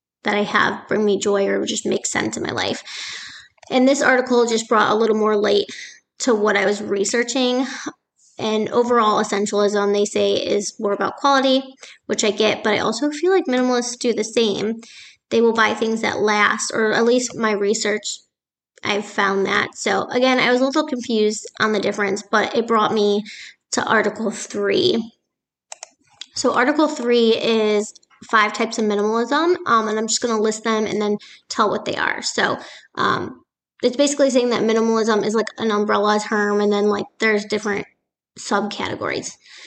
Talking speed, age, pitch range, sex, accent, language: 180 wpm, 20-39, 210-235 Hz, female, American, English